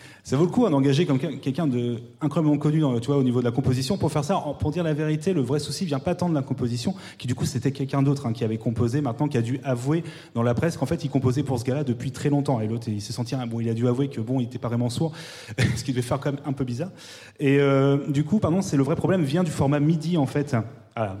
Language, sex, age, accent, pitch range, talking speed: French, male, 30-49, French, 120-155 Hz, 290 wpm